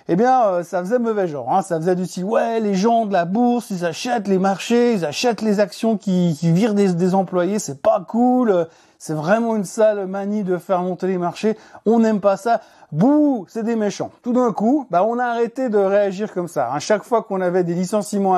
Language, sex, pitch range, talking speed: French, male, 180-235 Hz, 230 wpm